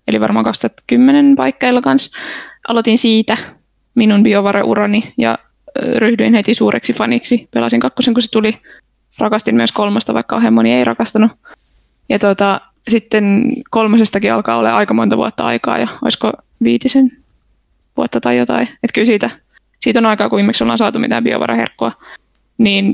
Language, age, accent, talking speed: Finnish, 20-39, native, 145 wpm